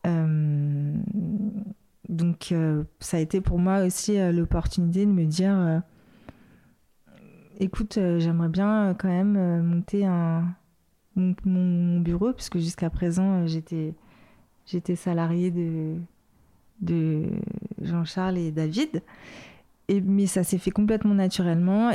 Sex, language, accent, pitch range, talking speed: female, French, French, 170-195 Hz, 130 wpm